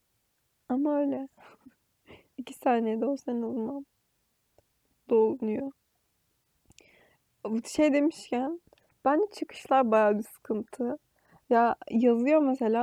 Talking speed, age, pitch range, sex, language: 90 wpm, 20-39, 225-275 Hz, female, Turkish